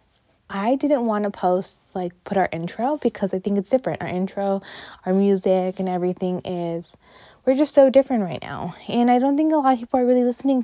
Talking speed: 215 wpm